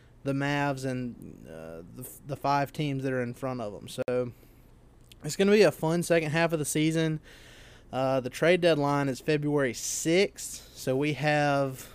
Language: English